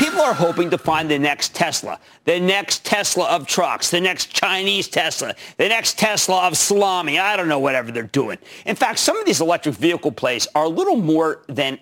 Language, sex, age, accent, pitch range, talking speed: English, male, 50-69, American, 140-205 Hz, 210 wpm